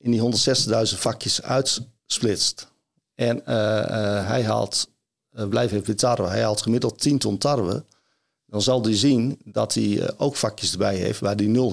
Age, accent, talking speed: 50-69, Dutch, 170 wpm